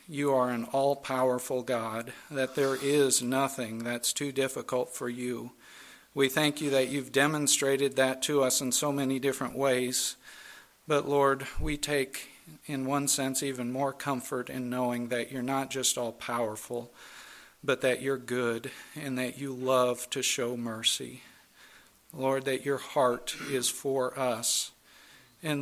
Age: 50-69